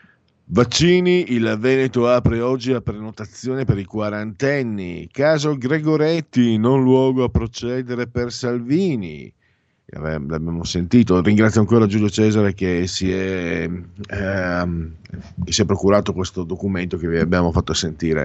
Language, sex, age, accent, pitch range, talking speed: Italian, male, 50-69, native, 85-125 Hz, 125 wpm